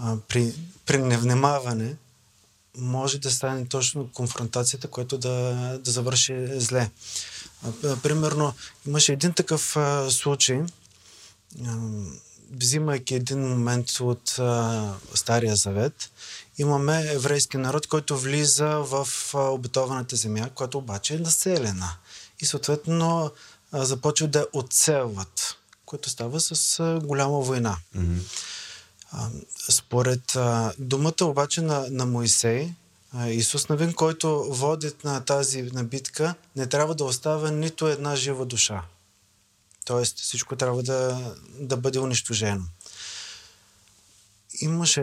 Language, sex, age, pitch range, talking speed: Bulgarian, male, 30-49, 115-145 Hz, 105 wpm